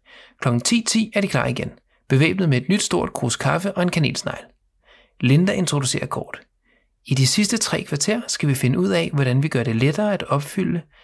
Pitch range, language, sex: 125-185 Hz, Danish, male